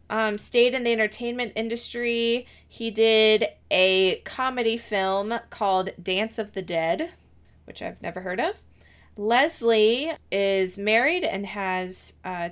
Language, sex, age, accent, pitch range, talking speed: English, female, 20-39, American, 185-235 Hz, 130 wpm